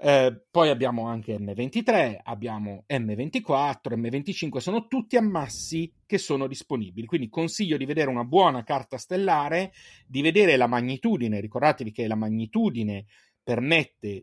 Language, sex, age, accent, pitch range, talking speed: Italian, male, 30-49, native, 110-150 Hz, 130 wpm